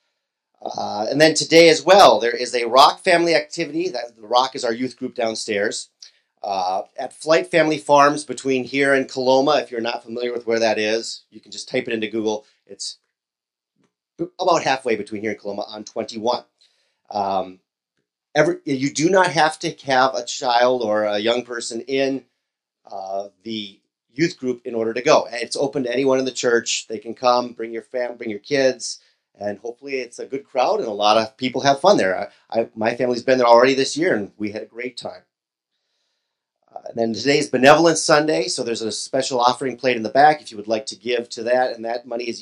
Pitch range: 110-135 Hz